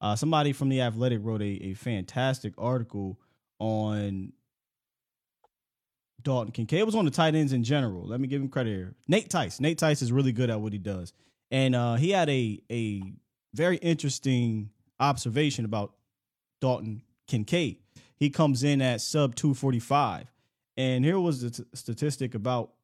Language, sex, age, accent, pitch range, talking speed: English, male, 20-39, American, 115-145 Hz, 165 wpm